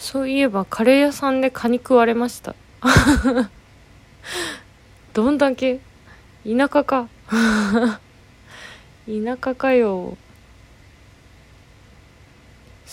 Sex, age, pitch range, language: female, 20-39, 190-260 Hz, Japanese